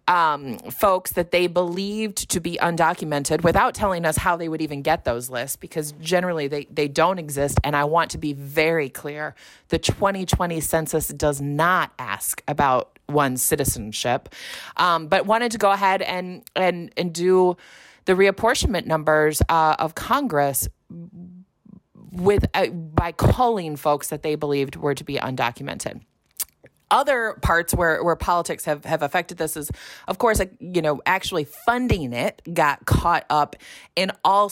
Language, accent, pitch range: English, American, 145-180 Hz